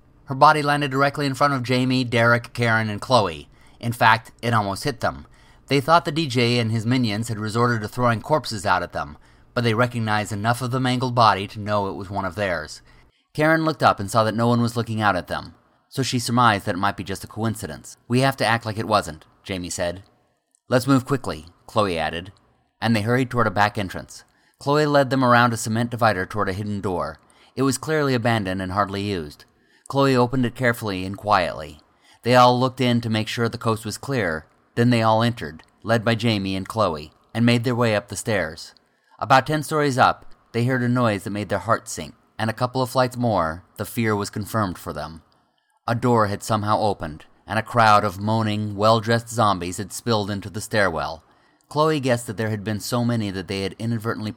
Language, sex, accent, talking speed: English, male, American, 215 wpm